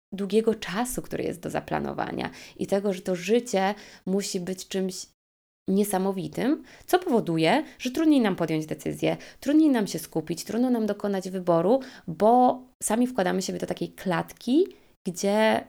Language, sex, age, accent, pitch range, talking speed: Polish, female, 20-39, native, 185-245 Hz, 145 wpm